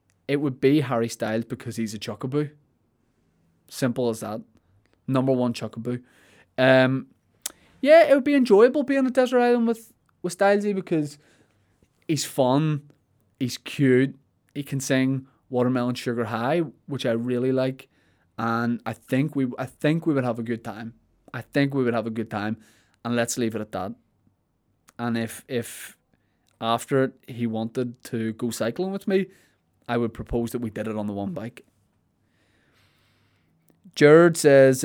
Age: 20-39